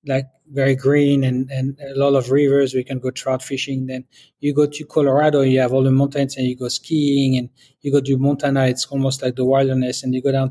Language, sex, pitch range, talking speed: English, male, 130-145 Hz, 240 wpm